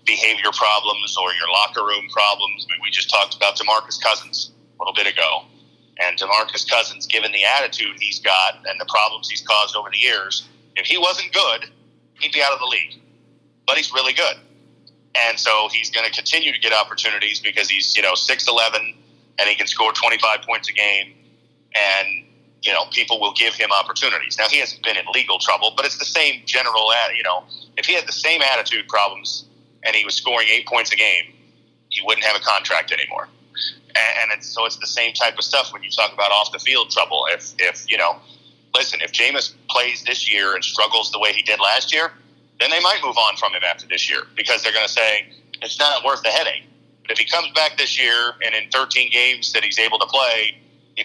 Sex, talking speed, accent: male, 215 wpm, American